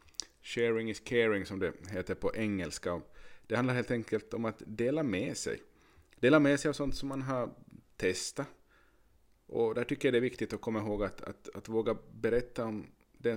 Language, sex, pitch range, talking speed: Swedish, male, 90-120 Hz, 195 wpm